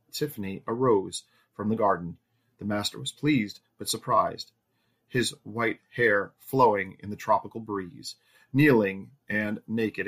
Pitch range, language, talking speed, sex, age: 105-125 Hz, English, 130 wpm, male, 30-49